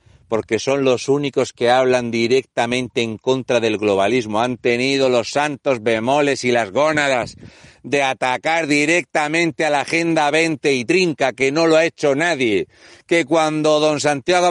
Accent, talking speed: Spanish, 155 wpm